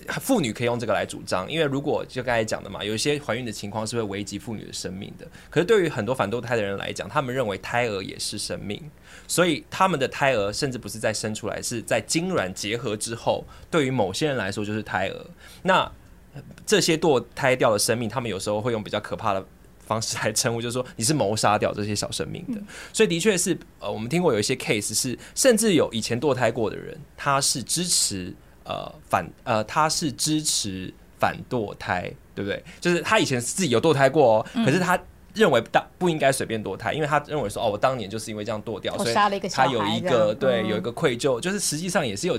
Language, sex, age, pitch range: Chinese, male, 20-39, 105-155 Hz